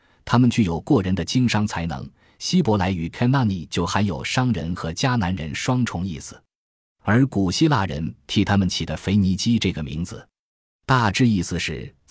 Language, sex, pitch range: Chinese, male, 85-115 Hz